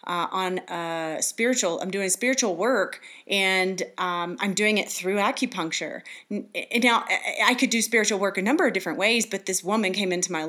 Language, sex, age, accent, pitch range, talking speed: English, female, 30-49, American, 175-220 Hz, 185 wpm